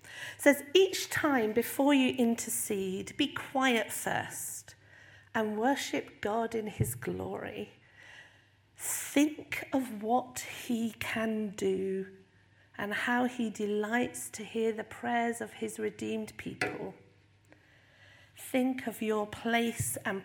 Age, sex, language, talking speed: 50-69, female, English, 115 wpm